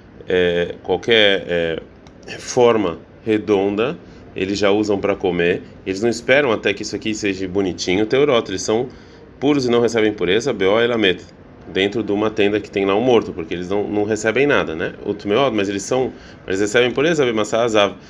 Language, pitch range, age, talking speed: Portuguese, 95-110 Hz, 20-39, 170 wpm